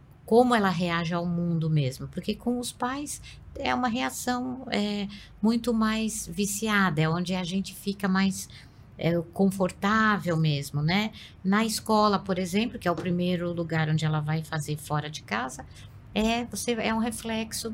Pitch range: 165-215 Hz